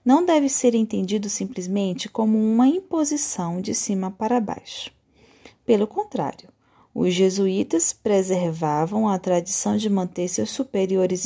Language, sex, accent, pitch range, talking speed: Portuguese, female, Brazilian, 190-245 Hz, 125 wpm